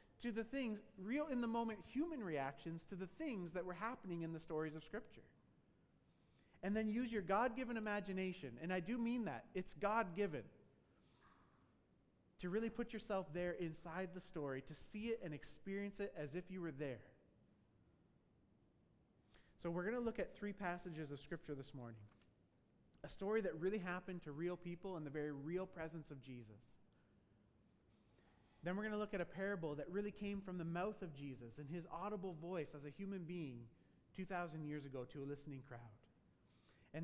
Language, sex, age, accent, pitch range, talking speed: English, male, 30-49, American, 155-205 Hz, 180 wpm